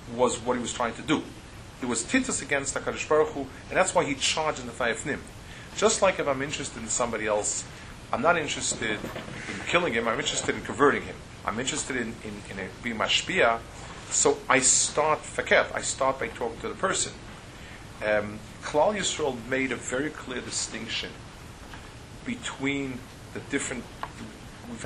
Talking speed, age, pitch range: 165 wpm, 40-59, 105-140 Hz